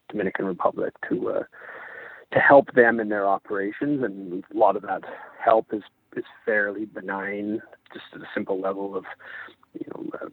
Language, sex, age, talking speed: English, male, 30-49, 170 wpm